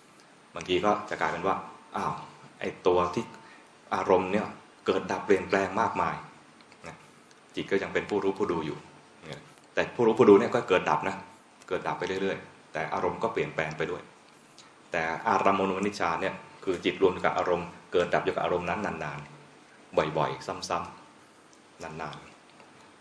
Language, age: Thai, 20-39